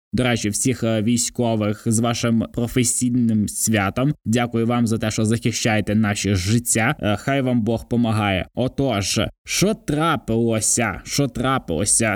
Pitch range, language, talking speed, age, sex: 115-140 Hz, Ukrainian, 125 wpm, 20-39, male